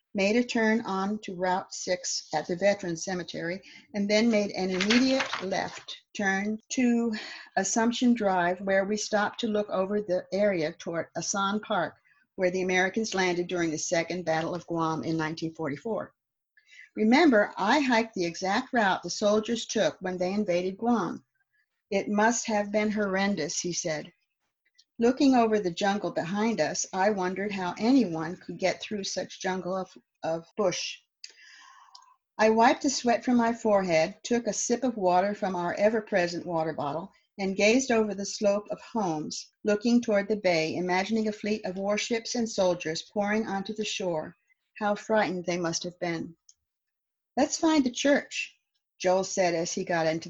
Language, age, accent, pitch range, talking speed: English, 50-69, American, 180-225 Hz, 165 wpm